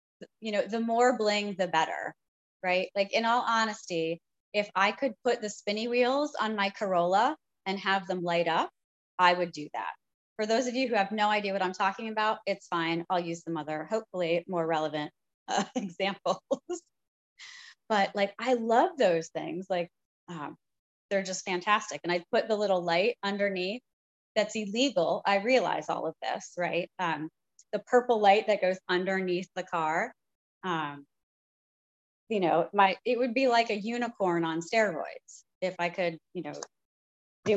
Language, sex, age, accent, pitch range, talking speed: English, female, 20-39, American, 175-225 Hz, 170 wpm